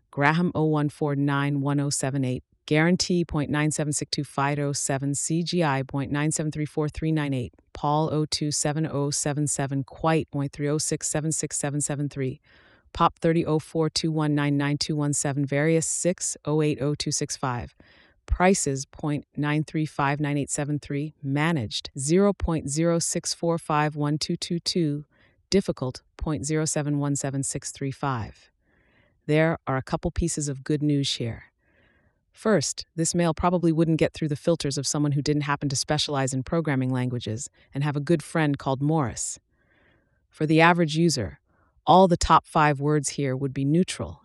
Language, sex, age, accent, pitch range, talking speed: English, female, 30-49, American, 140-160 Hz, 90 wpm